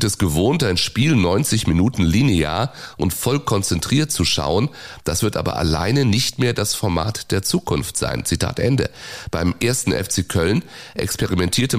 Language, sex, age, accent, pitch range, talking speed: German, male, 30-49, German, 85-115 Hz, 155 wpm